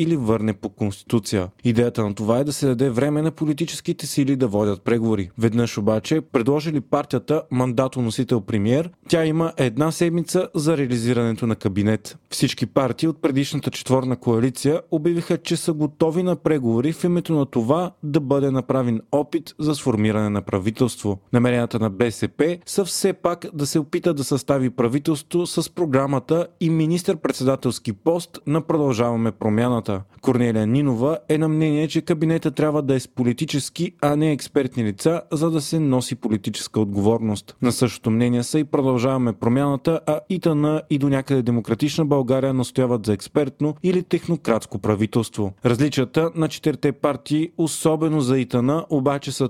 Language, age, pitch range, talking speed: Bulgarian, 30-49, 120-160 Hz, 155 wpm